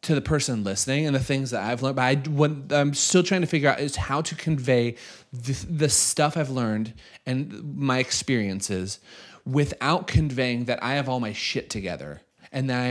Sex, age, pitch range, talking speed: male, 30-49, 120-155 Hz, 200 wpm